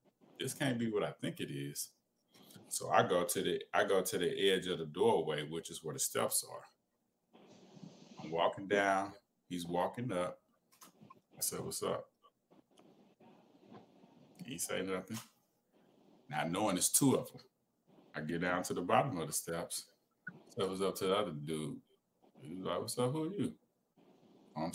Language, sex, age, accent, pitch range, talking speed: English, male, 30-49, American, 90-125 Hz, 175 wpm